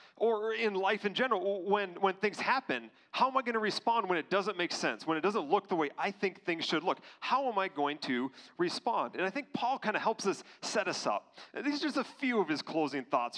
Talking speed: 255 wpm